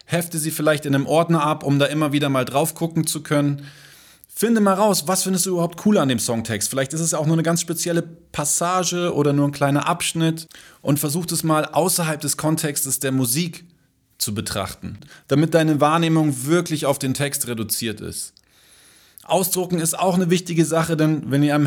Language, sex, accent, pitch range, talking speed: German, male, German, 130-160 Hz, 195 wpm